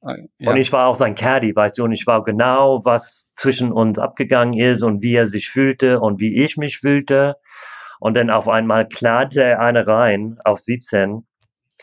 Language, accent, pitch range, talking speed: German, German, 110-130 Hz, 190 wpm